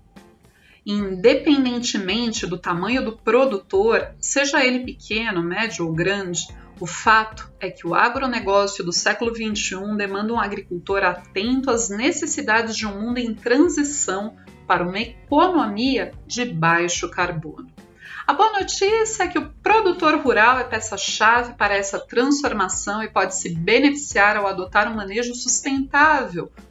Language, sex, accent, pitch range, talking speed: Portuguese, female, Brazilian, 195-275 Hz, 135 wpm